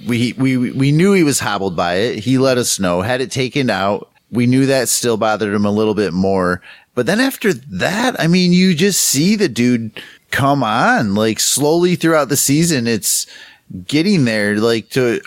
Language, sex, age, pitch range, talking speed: English, male, 30-49, 115-140 Hz, 195 wpm